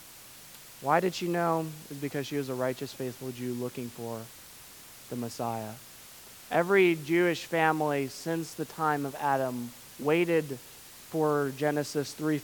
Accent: American